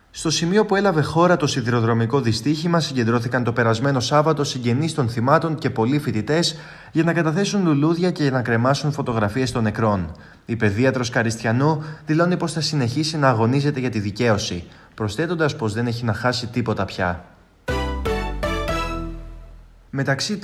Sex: male